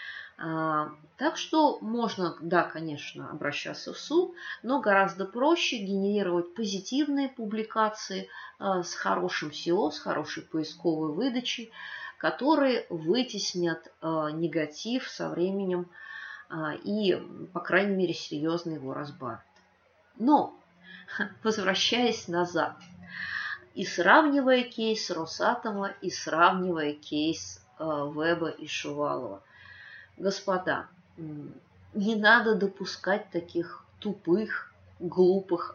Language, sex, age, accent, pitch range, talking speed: Russian, female, 30-49, native, 155-210 Hz, 90 wpm